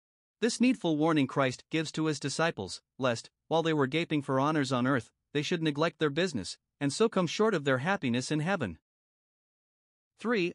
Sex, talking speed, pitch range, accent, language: male, 180 wpm, 130-165 Hz, American, English